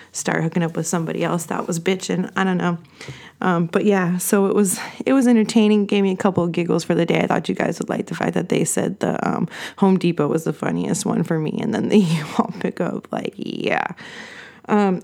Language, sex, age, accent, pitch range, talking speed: English, female, 20-39, American, 175-215 Hz, 240 wpm